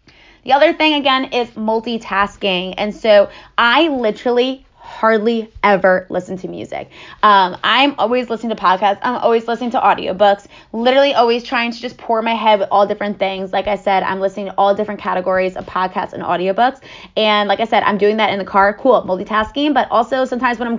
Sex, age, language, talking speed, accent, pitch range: female, 20-39, English, 195 wpm, American, 195-240 Hz